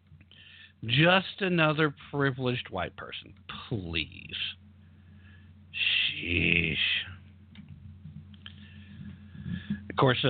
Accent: American